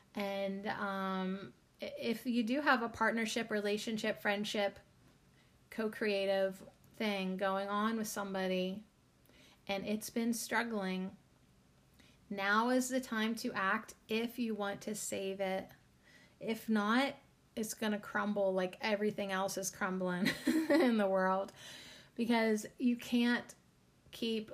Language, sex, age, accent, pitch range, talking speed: English, female, 30-49, American, 195-225 Hz, 120 wpm